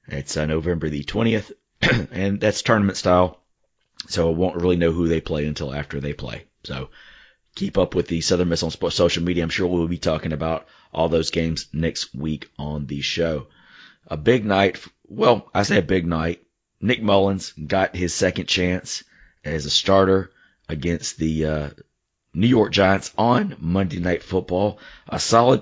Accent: American